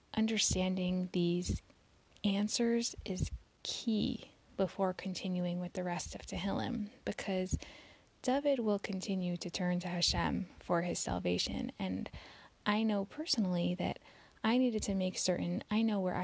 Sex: female